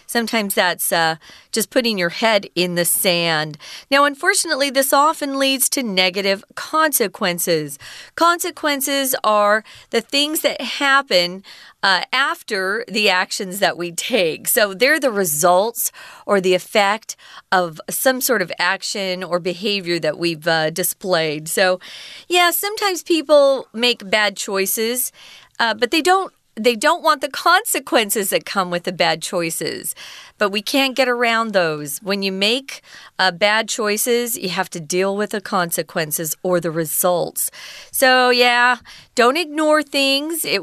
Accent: American